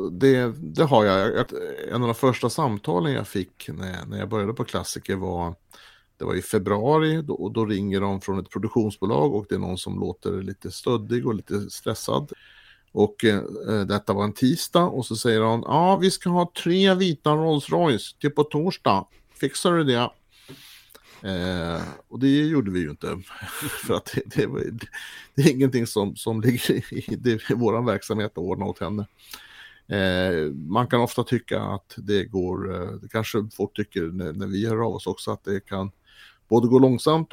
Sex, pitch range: male, 100-130 Hz